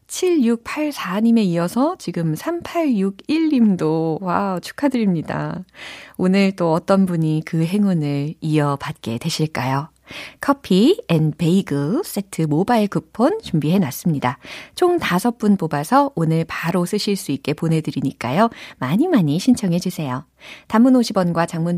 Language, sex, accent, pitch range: Korean, female, native, 155-255 Hz